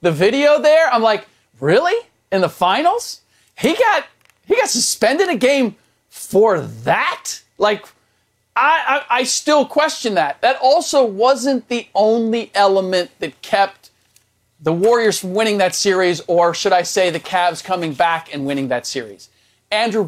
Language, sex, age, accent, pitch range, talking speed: English, male, 40-59, American, 170-225 Hz, 155 wpm